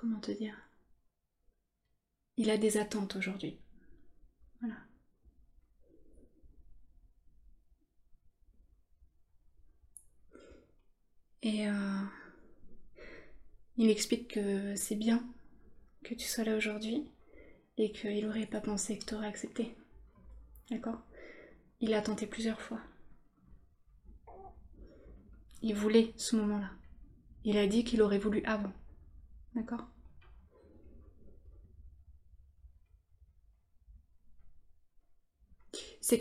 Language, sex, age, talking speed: French, female, 20-39, 80 wpm